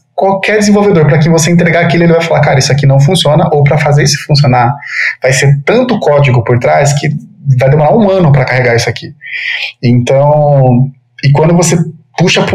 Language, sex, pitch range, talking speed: Portuguese, male, 125-165 Hz, 195 wpm